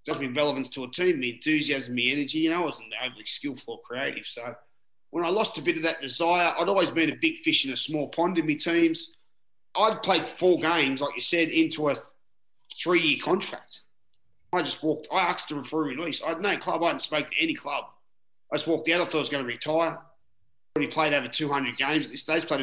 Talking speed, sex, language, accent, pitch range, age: 240 wpm, male, English, Australian, 140-175 Hz, 30-49